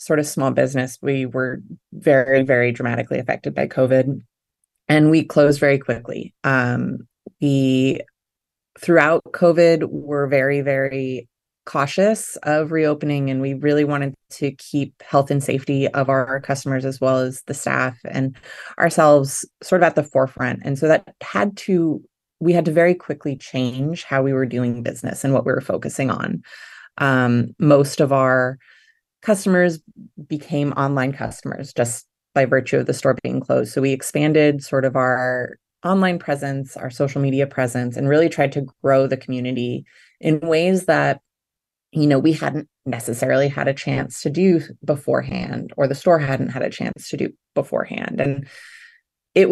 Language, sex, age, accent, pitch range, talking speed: English, female, 20-39, American, 130-160 Hz, 160 wpm